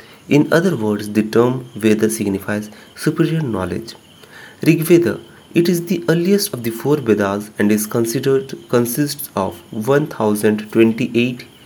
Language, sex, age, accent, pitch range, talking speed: Hindi, male, 30-49, native, 105-145 Hz, 125 wpm